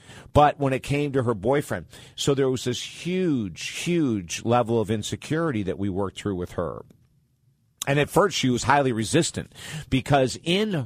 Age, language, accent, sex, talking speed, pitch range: 50-69, English, American, male, 170 wpm, 105-140 Hz